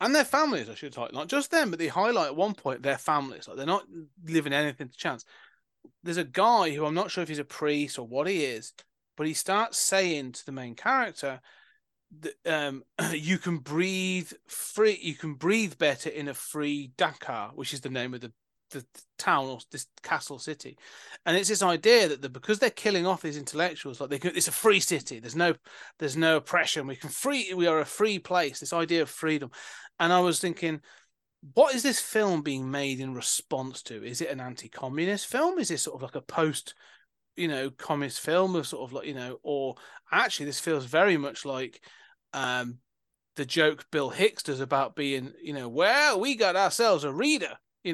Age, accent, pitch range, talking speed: 30-49, British, 140-180 Hz, 205 wpm